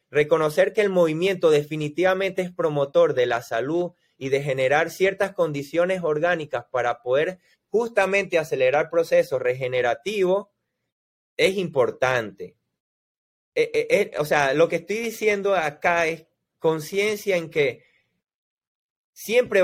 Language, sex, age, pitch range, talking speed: Spanish, male, 30-49, 150-210 Hz, 120 wpm